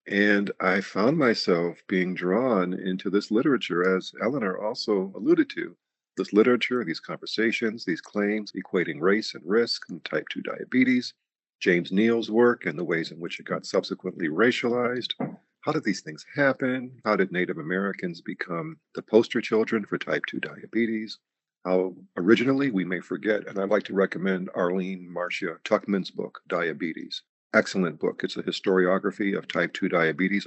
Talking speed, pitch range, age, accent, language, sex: 160 wpm, 90-115 Hz, 50-69, American, English, male